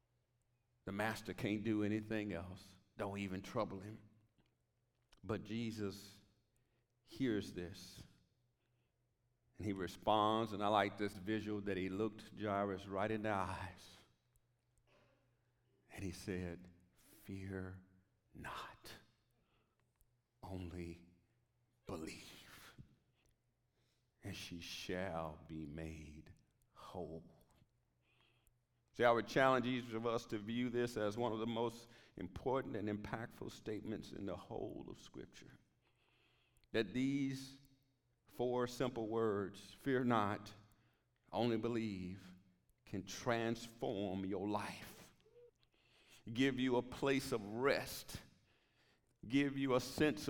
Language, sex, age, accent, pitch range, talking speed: English, male, 50-69, American, 100-120 Hz, 105 wpm